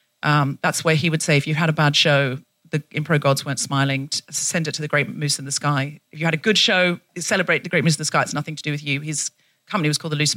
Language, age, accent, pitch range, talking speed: English, 40-59, British, 140-170 Hz, 295 wpm